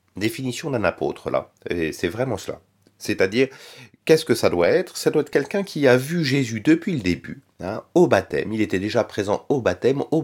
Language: French